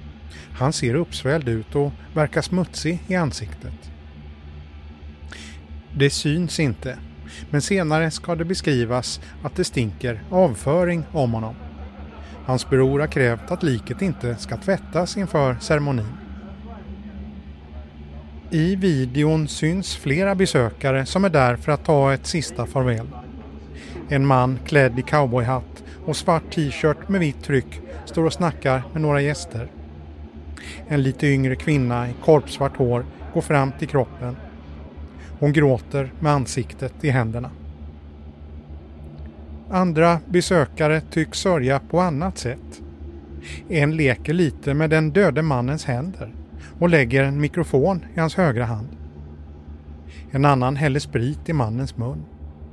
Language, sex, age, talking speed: Swedish, male, 30-49, 125 wpm